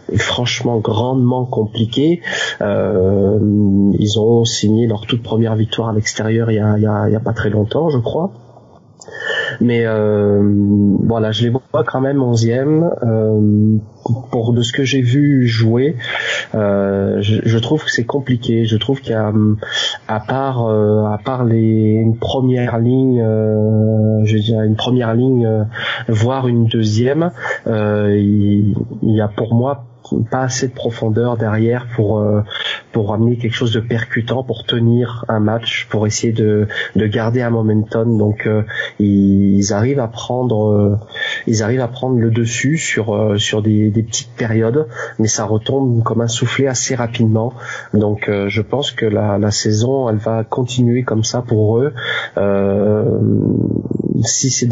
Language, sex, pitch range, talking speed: French, male, 110-120 Hz, 165 wpm